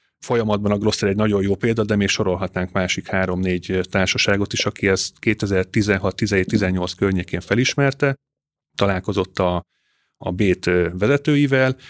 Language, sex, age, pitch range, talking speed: Hungarian, male, 30-49, 90-110 Hz, 120 wpm